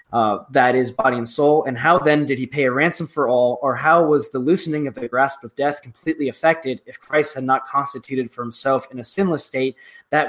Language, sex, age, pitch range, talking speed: English, male, 20-39, 125-150 Hz, 235 wpm